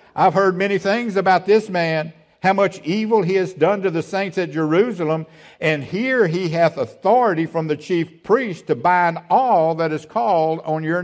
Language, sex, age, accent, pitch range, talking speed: English, male, 60-79, American, 120-195 Hz, 190 wpm